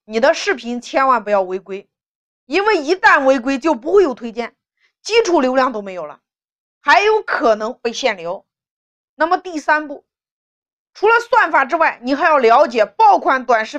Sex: female